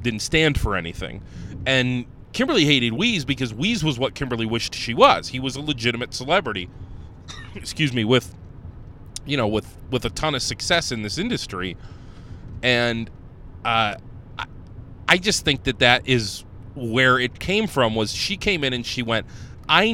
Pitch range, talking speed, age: 100-135 Hz, 170 wpm, 30-49